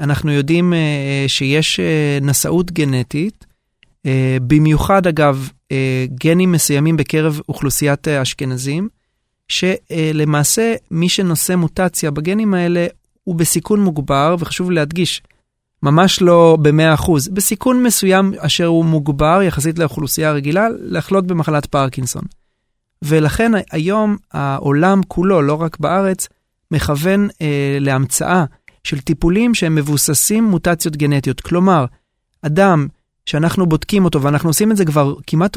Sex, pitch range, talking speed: male, 145-185 Hz, 115 wpm